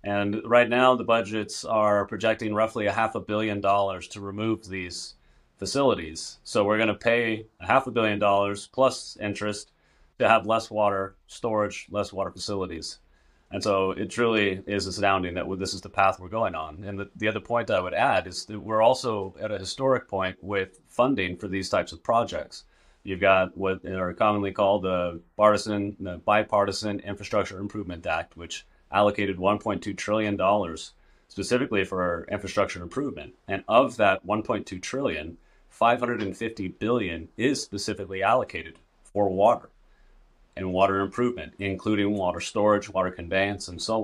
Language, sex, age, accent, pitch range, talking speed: English, male, 30-49, American, 95-110 Hz, 160 wpm